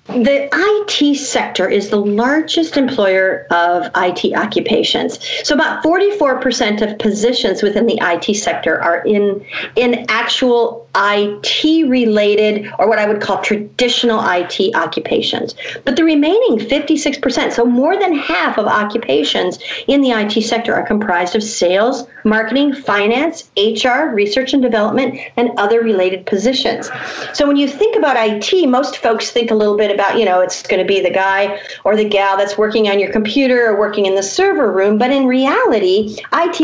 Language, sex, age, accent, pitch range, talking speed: English, female, 50-69, American, 205-260 Hz, 165 wpm